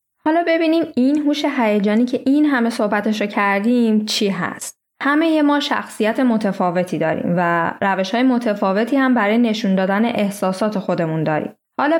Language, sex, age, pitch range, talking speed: Persian, female, 10-29, 195-255 Hz, 145 wpm